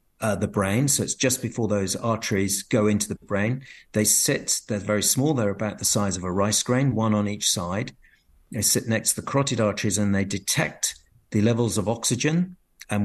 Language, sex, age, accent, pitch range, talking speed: English, male, 50-69, British, 100-125 Hz, 205 wpm